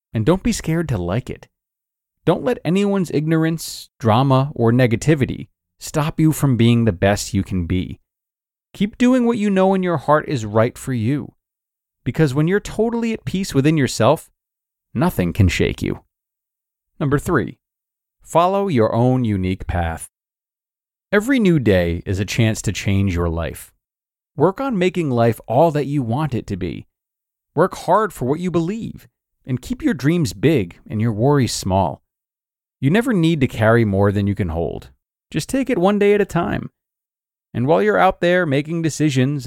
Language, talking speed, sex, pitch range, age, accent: English, 175 wpm, male, 105-160 Hz, 30-49, American